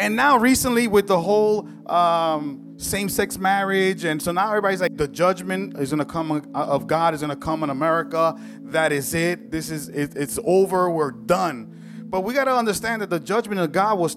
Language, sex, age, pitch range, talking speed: English, male, 30-49, 165-230 Hz, 210 wpm